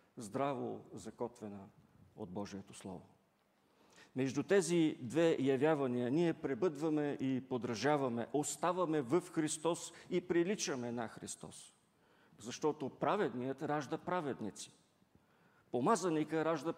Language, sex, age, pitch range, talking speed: English, male, 50-69, 125-165 Hz, 95 wpm